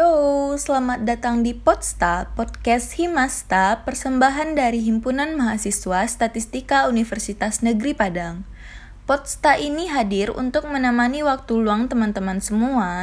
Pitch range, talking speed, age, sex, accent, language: 200-260 Hz, 110 wpm, 20-39, female, native, Indonesian